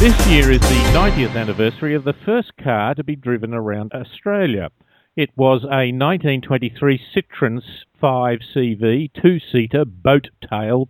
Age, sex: 50-69, male